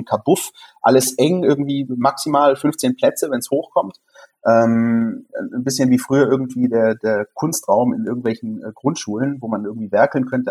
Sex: male